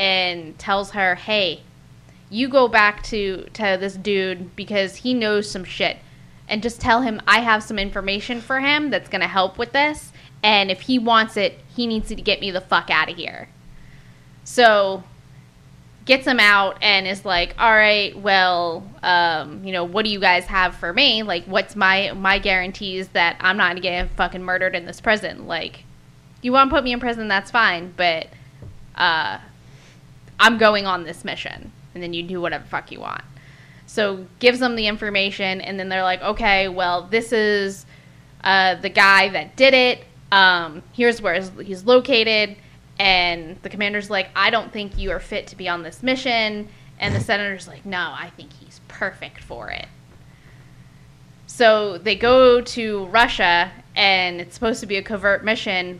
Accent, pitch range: American, 185-220 Hz